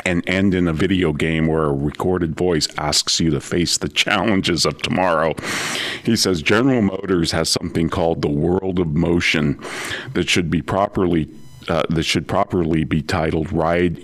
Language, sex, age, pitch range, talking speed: English, male, 40-59, 80-95 Hz, 170 wpm